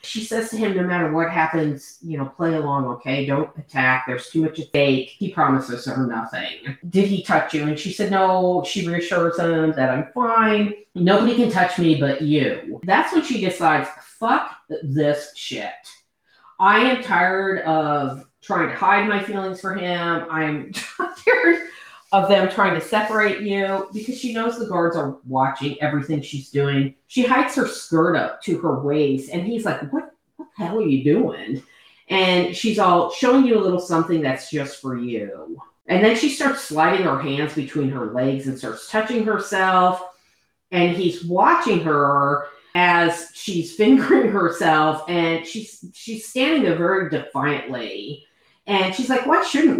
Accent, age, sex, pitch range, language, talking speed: American, 40-59, female, 150-210 Hz, English, 170 wpm